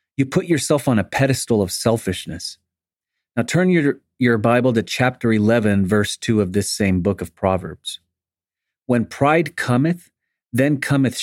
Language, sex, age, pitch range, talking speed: English, male, 40-59, 100-130 Hz, 155 wpm